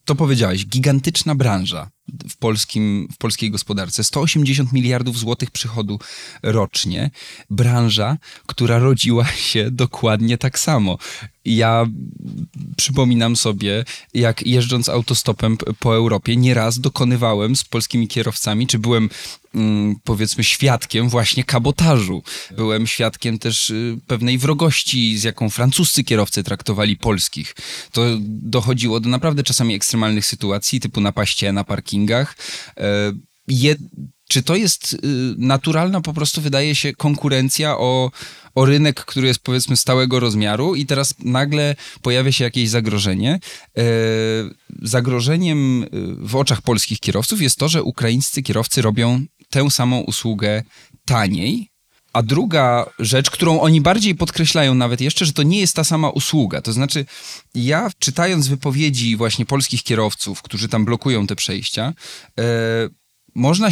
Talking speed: 120 wpm